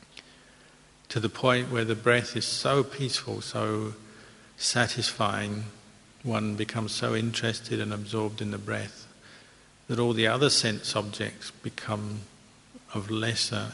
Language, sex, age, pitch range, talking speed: English, male, 50-69, 105-115 Hz, 125 wpm